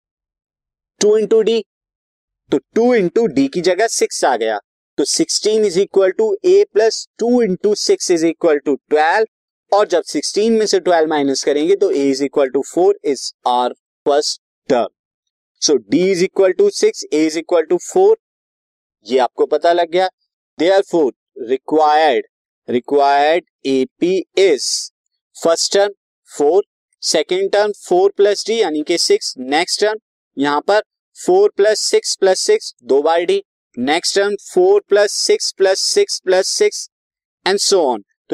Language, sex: Hindi, male